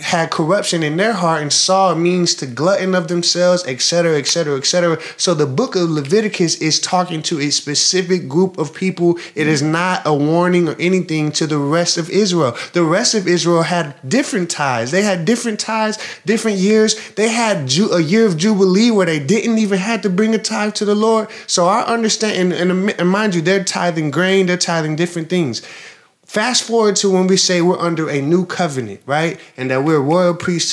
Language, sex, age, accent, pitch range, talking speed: English, male, 20-39, American, 165-210 Hz, 205 wpm